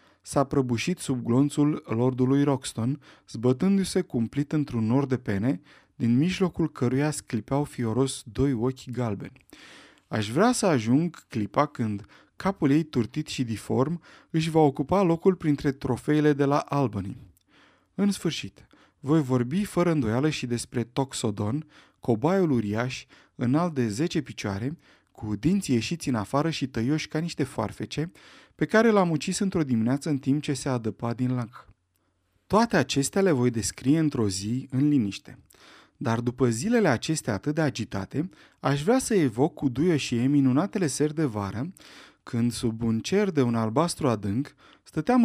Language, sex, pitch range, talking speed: Romanian, male, 120-155 Hz, 155 wpm